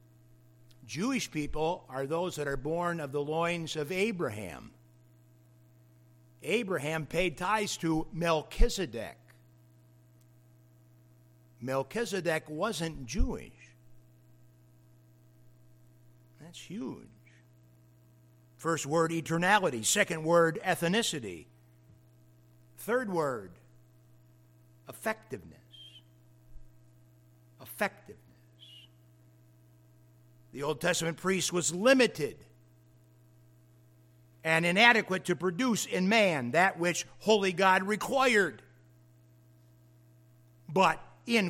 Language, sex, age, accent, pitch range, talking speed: English, male, 60-79, American, 120-175 Hz, 75 wpm